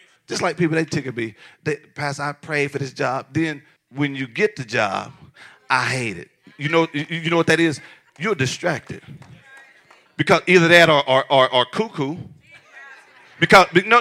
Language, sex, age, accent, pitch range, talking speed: English, male, 40-59, American, 155-215 Hz, 175 wpm